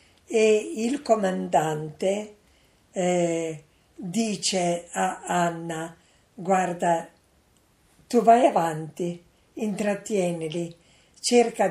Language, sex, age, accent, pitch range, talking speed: Italian, female, 50-69, native, 170-210 Hz, 65 wpm